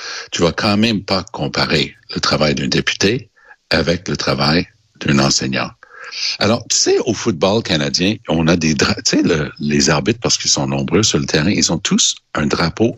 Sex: male